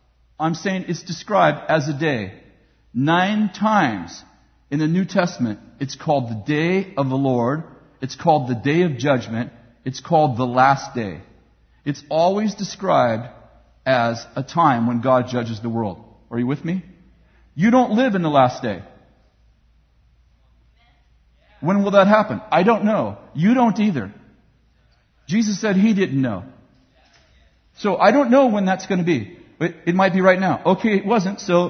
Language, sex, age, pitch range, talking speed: English, male, 50-69, 130-200 Hz, 165 wpm